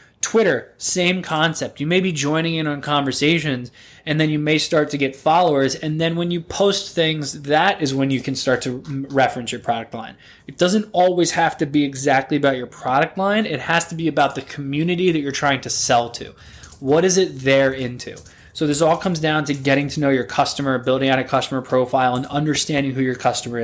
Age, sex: 20-39, male